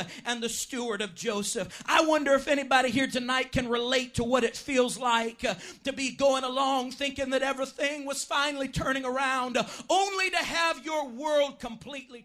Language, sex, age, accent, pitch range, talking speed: English, male, 40-59, American, 205-255 Hz, 170 wpm